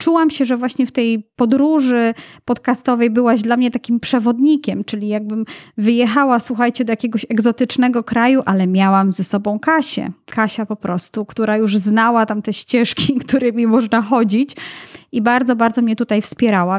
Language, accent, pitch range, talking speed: Polish, native, 215-265 Hz, 155 wpm